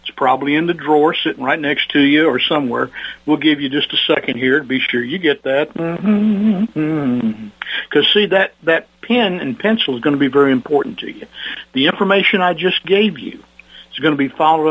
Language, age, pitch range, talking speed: English, 60-79, 130-165 Hz, 210 wpm